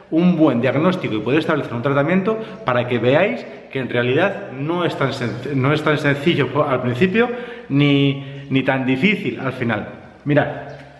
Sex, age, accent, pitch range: male, 30-49, Spanish, 135-205 Hz